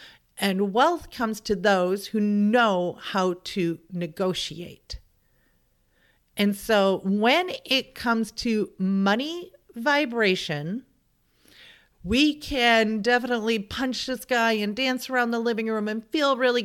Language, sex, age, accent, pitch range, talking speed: English, female, 40-59, American, 180-230 Hz, 120 wpm